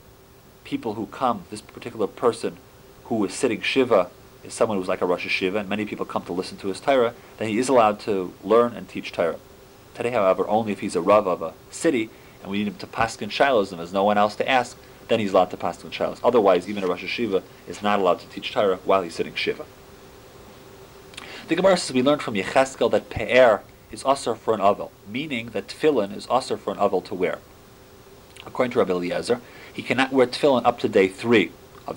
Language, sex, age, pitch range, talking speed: English, male, 40-59, 100-130 Hz, 220 wpm